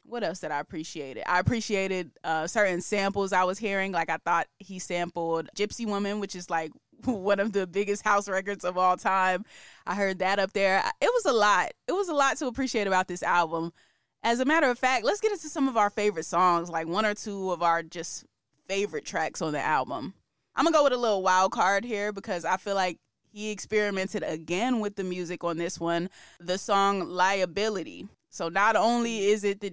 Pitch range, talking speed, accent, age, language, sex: 180-215 Hz, 215 wpm, American, 20-39, English, female